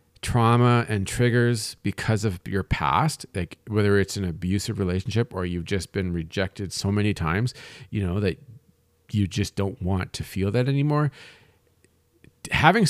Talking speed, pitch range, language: 155 wpm, 95-130 Hz, English